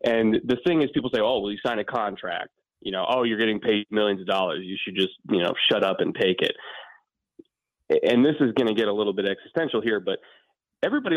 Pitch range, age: 105-130 Hz, 20-39